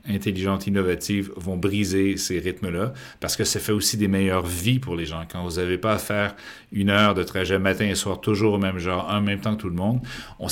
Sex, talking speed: male, 240 wpm